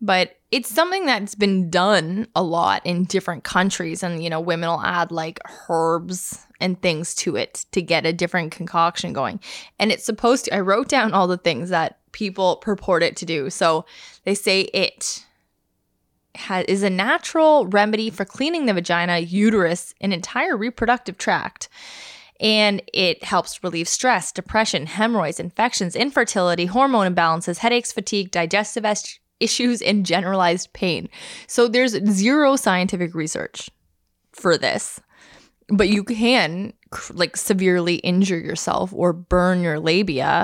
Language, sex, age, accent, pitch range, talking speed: English, female, 10-29, American, 175-215 Hz, 145 wpm